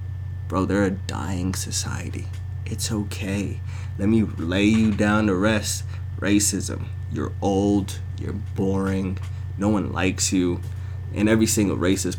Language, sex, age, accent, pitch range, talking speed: English, male, 20-39, American, 95-105 Hz, 135 wpm